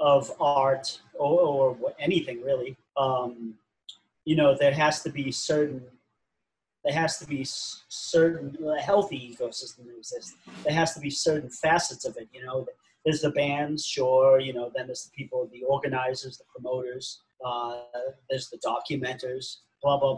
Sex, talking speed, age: male, 160 wpm, 40-59